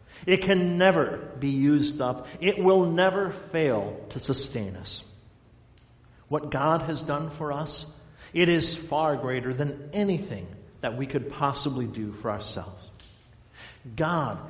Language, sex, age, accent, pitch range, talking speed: English, male, 50-69, American, 135-190 Hz, 135 wpm